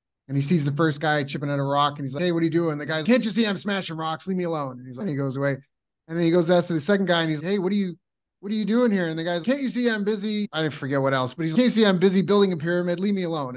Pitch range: 160-205 Hz